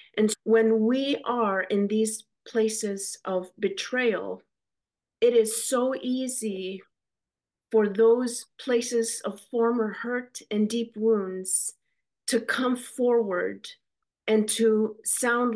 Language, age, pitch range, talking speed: English, 40-59, 200-230 Hz, 110 wpm